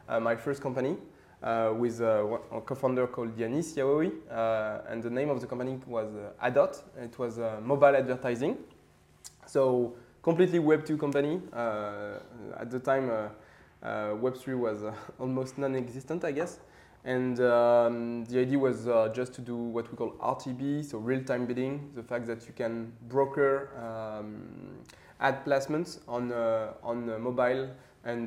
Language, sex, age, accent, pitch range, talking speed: English, male, 20-39, French, 115-135 Hz, 160 wpm